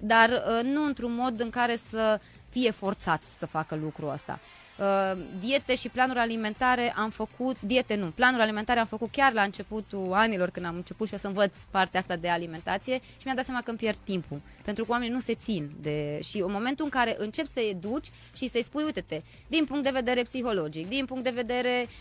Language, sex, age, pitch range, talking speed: Romanian, female, 20-39, 200-275 Hz, 215 wpm